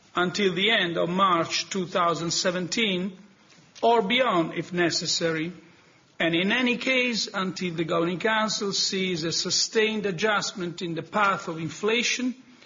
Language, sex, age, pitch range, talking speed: English, male, 50-69, 170-210 Hz, 130 wpm